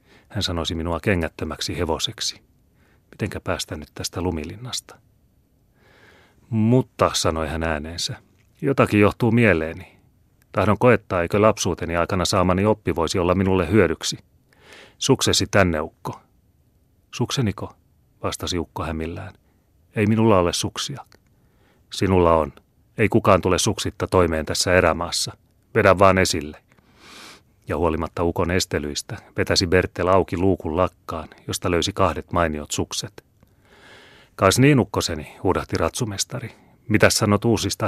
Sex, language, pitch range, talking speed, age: male, Finnish, 85-110 Hz, 115 wpm, 30-49